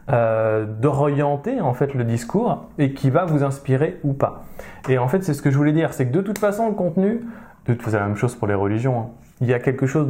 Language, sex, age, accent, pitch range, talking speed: French, male, 20-39, French, 115-150 Hz, 250 wpm